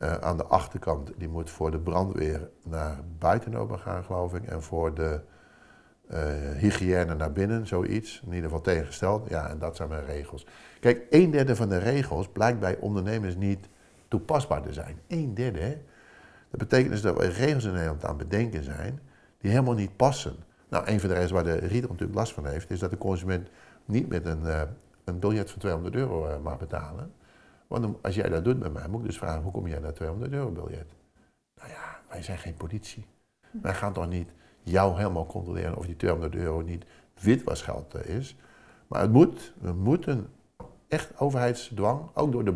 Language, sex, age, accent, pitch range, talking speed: Dutch, male, 50-69, Dutch, 85-115 Hz, 195 wpm